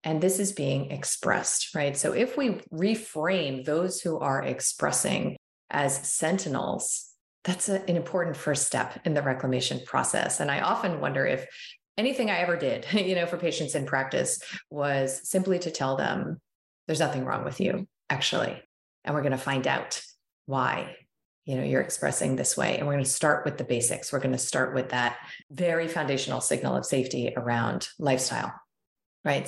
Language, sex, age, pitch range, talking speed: English, female, 30-49, 135-165 Hz, 175 wpm